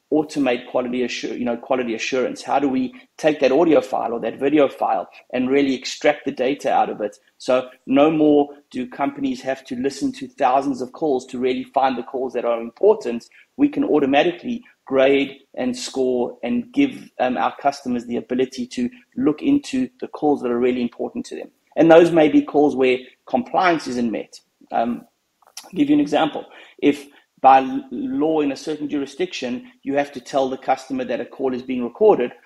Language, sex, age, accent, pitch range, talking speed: English, male, 30-49, South African, 130-175 Hz, 190 wpm